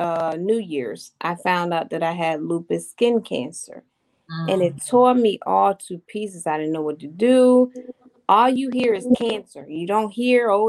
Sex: female